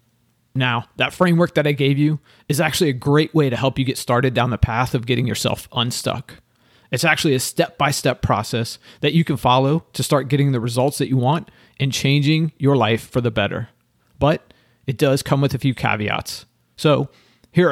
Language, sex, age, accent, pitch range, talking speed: English, male, 30-49, American, 120-150 Hz, 195 wpm